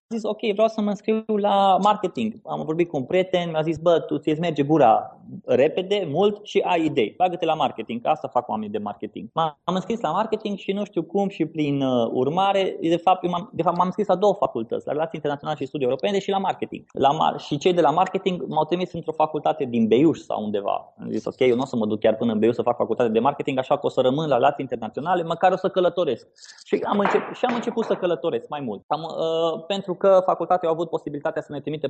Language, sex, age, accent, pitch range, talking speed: Romanian, male, 20-39, native, 145-195 Hz, 240 wpm